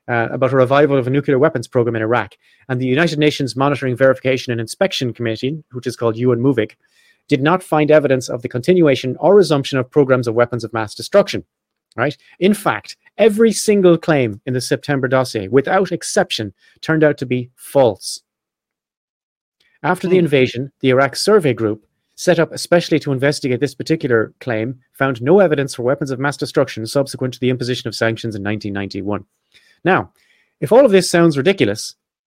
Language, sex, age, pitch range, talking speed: English, male, 30-49, 120-155 Hz, 180 wpm